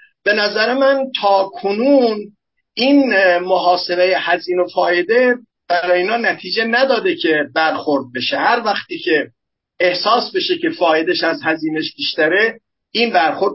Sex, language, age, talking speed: male, Persian, 50-69, 130 wpm